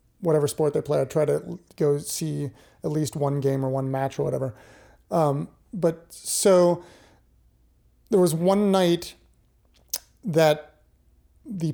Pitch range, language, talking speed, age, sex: 155-190 Hz, English, 140 wpm, 30-49, male